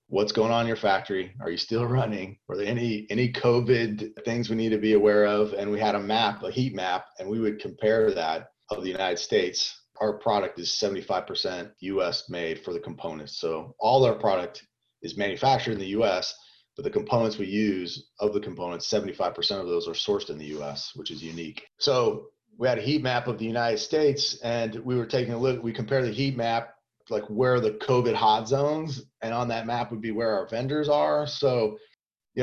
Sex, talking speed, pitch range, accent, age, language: male, 215 wpm, 105-135 Hz, American, 30-49, English